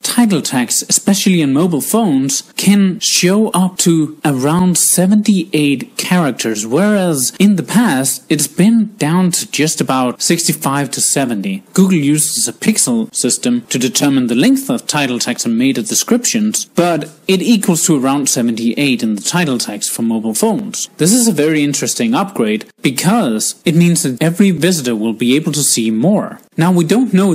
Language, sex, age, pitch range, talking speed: English, male, 30-49, 130-200 Hz, 165 wpm